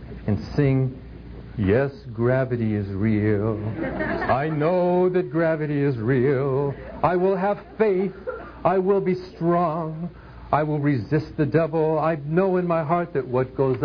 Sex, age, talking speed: male, 60-79, 145 wpm